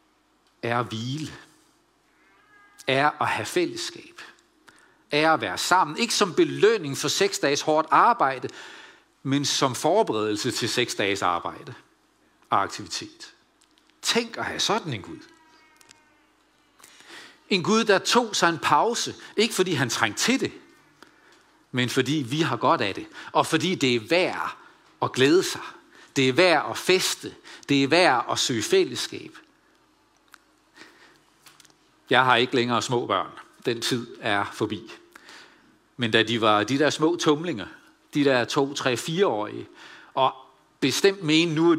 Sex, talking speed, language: male, 145 wpm, Danish